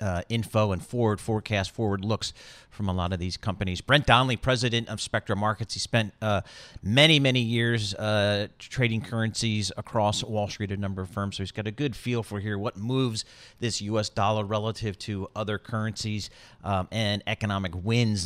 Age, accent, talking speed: 40-59, American, 185 wpm